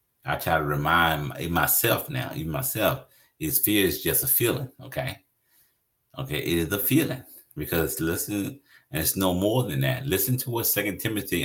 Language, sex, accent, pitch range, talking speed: English, male, American, 80-125 Hz, 175 wpm